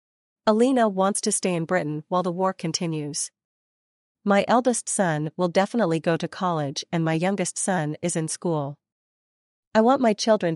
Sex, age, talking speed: female, 40-59, 165 wpm